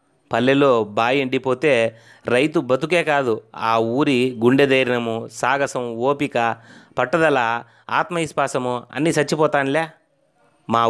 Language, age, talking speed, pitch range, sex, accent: Telugu, 30-49, 95 wpm, 120-140 Hz, male, native